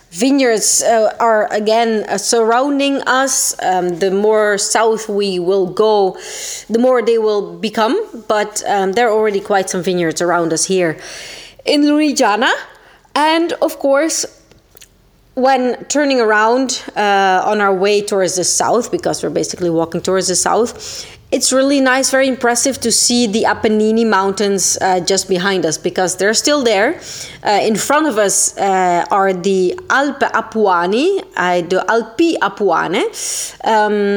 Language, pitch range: Italian, 190-250 Hz